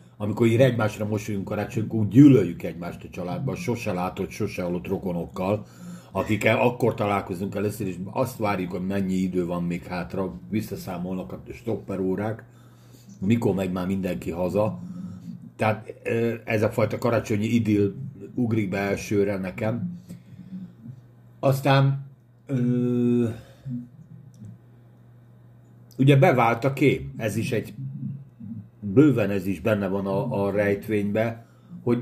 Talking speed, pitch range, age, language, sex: 120 wpm, 105-135 Hz, 60-79, Hungarian, male